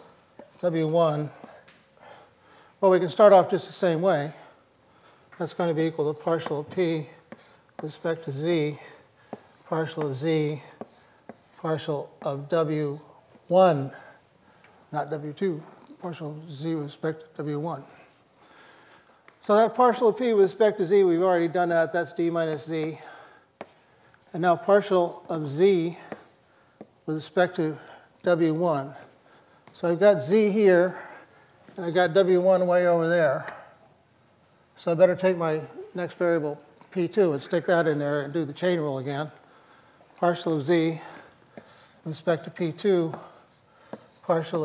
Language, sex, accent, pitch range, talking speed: English, male, American, 155-180 Hz, 140 wpm